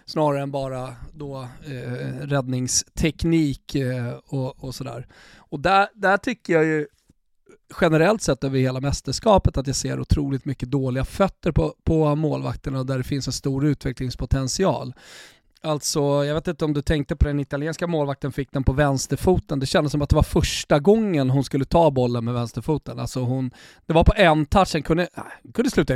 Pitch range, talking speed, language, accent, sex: 130-175 Hz, 180 wpm, Swedish, native, male